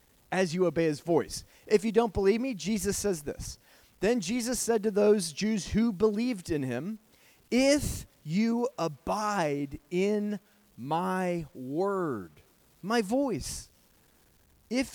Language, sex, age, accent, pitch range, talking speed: English, male, 30-49, American, 155-225 Hz, 130 wpm